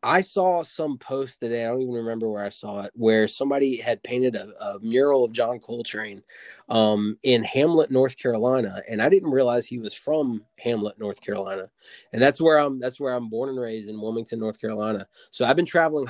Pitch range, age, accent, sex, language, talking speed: 110-135 Hz, 20-39, American, male, English, 210 wpm